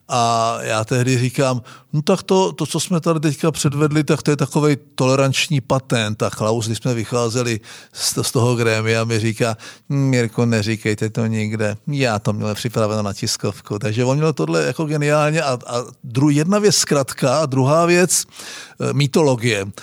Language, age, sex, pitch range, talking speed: Czech, 50-69, male, 120-145 Hz, 170 wpm